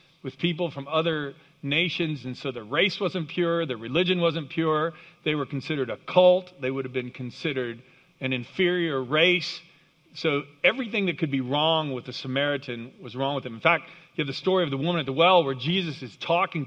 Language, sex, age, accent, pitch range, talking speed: English, male, 40-59, American, 140-170 Hz, 205 wpm